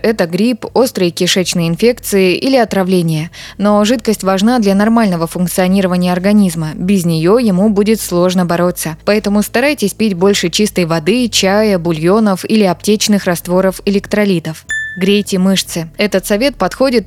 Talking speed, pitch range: 130 wpm, 180-215 Hz